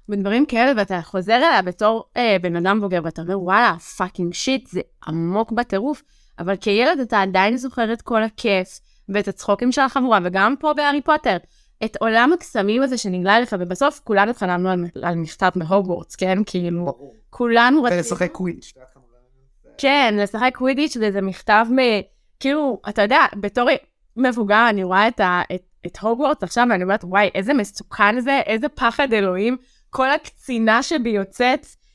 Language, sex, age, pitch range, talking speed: Hebrew, female, 20-39, 195-265 Hz, 150 wpm